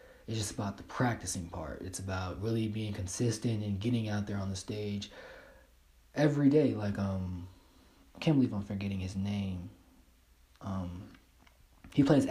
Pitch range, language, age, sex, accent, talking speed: 90-115 Hz, English, 20-39, male, American, 155 wpm